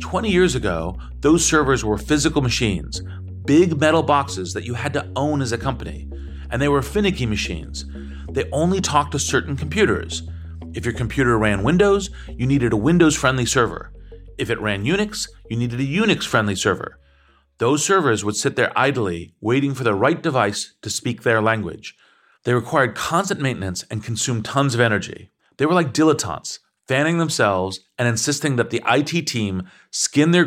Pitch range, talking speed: 105-145 Hz, 170 wpm